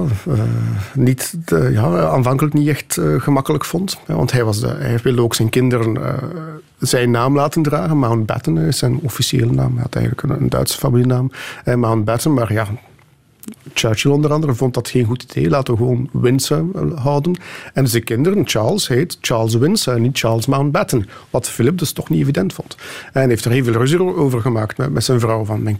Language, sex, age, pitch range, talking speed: Dutch, male, 50-69, 120-145 Hz, 200 wpm